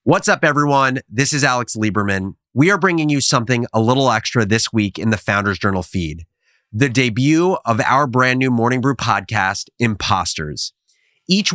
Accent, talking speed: American, 170 wpm